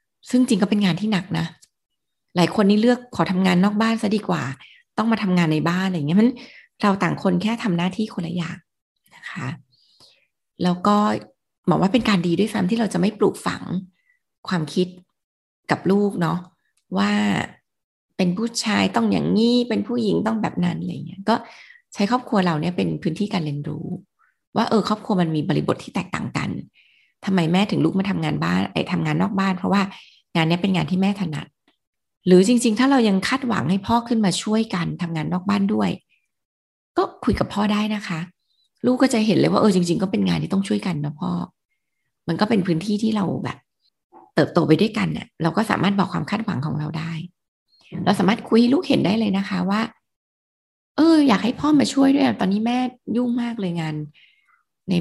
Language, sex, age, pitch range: Thai, female, 20-39, 175-220 Hz